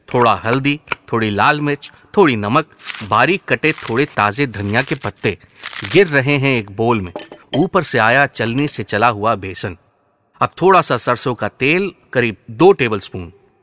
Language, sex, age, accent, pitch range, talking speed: Hindi, male, 30-49, native, 110-160 Hz, 165 wpm